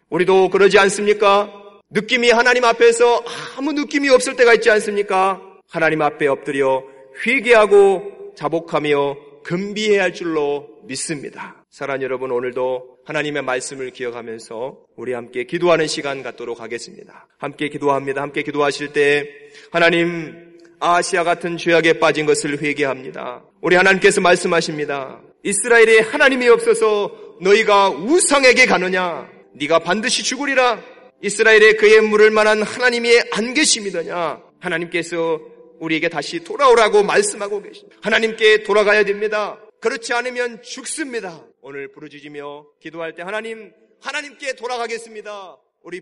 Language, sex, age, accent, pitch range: Korean, male, 30-49, native, 160-235 Hz